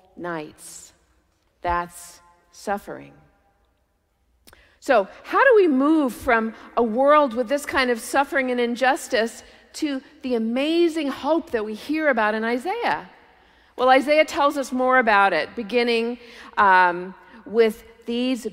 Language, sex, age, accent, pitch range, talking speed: English, female, 50-69, American, 185-265 Hz, 125 wpm